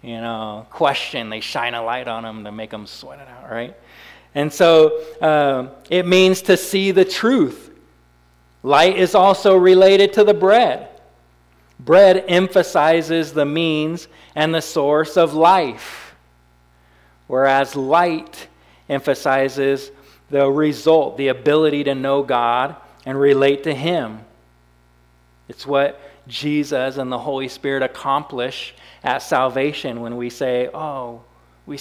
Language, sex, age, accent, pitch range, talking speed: English, male, 40-59, American, 125-155 Hz, 130 wpm